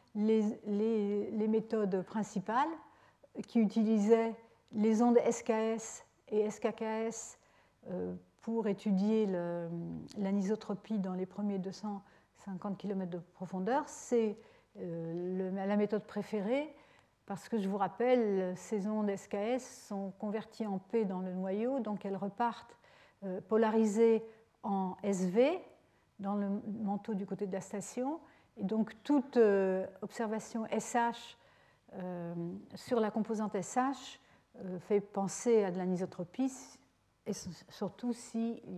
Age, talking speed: 50-69, 120 wpm